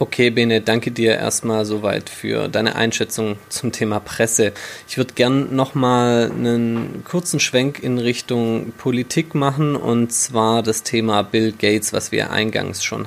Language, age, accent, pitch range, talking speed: German, 20-39, German, 115-130 Hz, 150 wpm